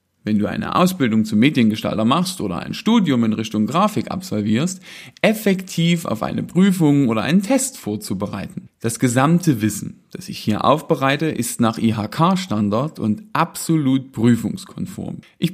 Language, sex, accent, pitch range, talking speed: German, male, German, 110-180 Hz, 140 wpm